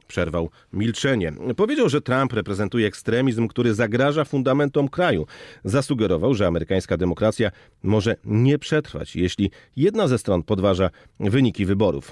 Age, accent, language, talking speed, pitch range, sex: 40-59, native, Polish, 125 wpm, 100-135 Hz, male